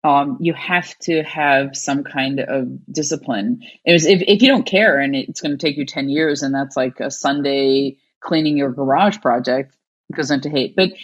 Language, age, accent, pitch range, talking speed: English, 30-49, Canadian, 140-165 Hz, 205 wpm